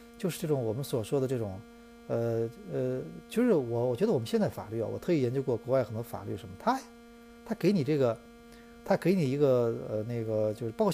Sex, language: male, Chinese